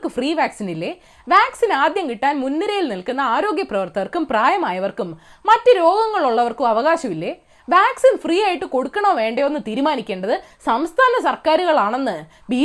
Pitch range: 255-400 Hz